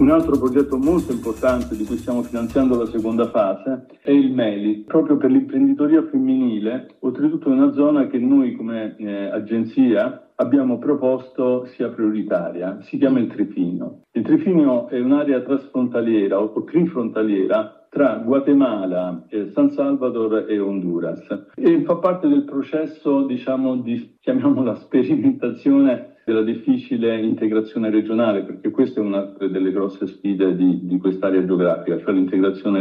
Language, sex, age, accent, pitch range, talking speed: Italian, male, 50-69, native, 110-175 Hz, 135 wpm